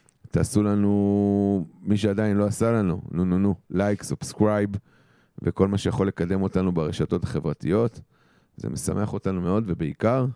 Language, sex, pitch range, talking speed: Hebrew, male, 85-105 Hz, 145 wpm